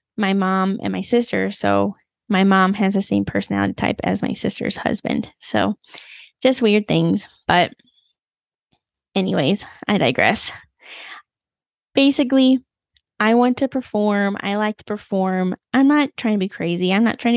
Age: 10-29